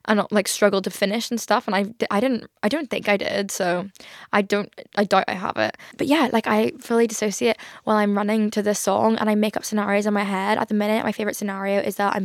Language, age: English, 10-29